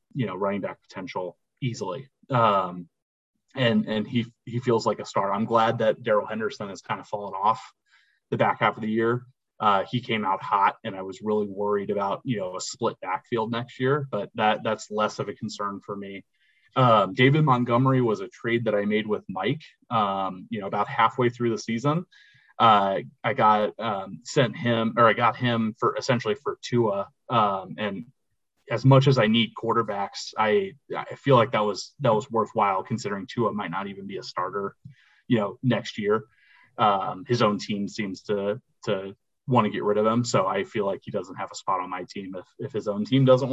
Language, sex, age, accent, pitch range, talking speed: English, male, 30-49, American, 100-125 Hz, 210 wpm